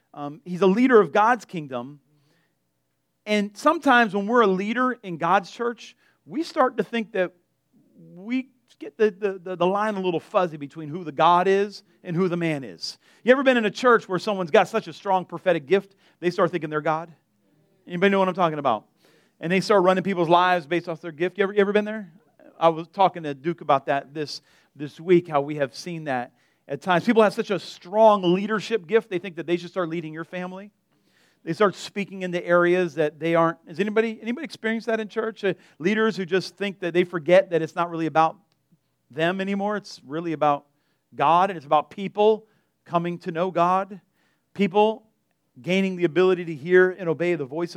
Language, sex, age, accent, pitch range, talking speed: English, male, 40-59, American, 160-200 Hz, 210 wpm